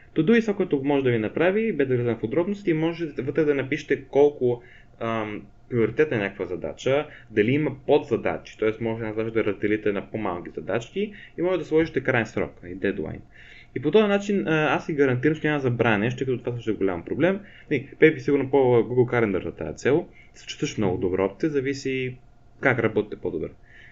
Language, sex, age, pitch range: Bulgarian, male, 20-39, 115-160 Hz